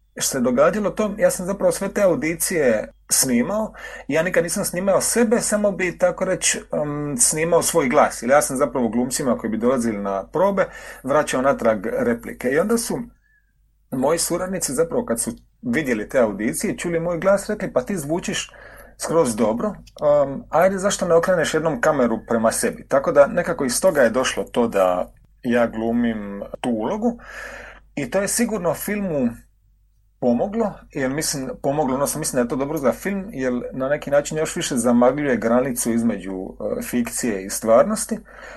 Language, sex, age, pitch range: Croatian, male, 40-59, 125-210 Hz